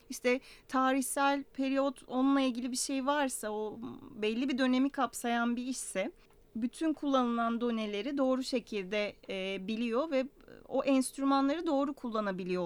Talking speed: 130 wpm